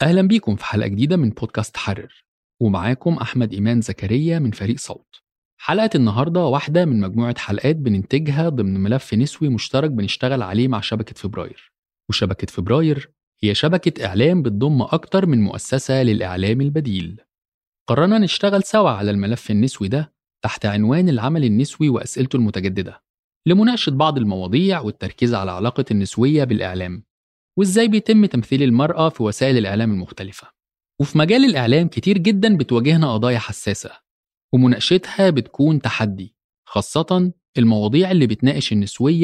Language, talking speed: Arabic, 135 wpm